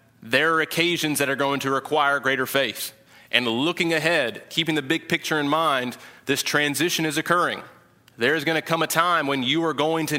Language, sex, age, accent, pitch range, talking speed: English, male, 30-49, American, 130-155 Hz, 205 wpm